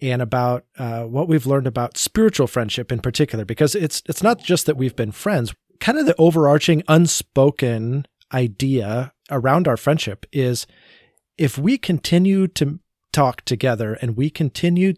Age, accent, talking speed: 30-49, American, 155 wpm